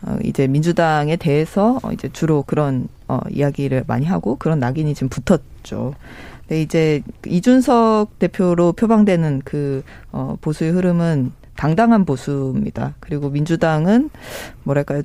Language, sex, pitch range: Korean, female, 140-185 Hz